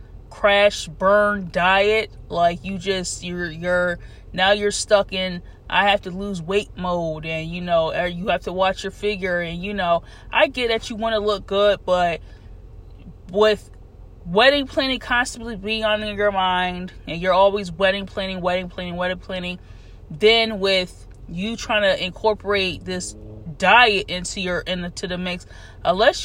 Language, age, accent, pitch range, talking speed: English, 20-39, American, 175-210 Hz, 165 wpm